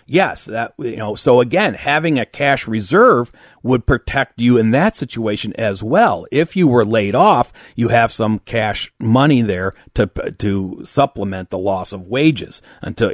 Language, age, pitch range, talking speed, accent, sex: English, 40-59, 100-140 Hz, 170 wpm, American, male